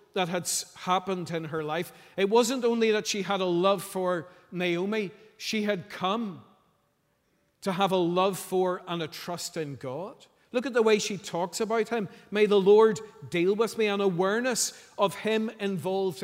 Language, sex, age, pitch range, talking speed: English, male, 50-69, 180-220 Hz, 175 wpm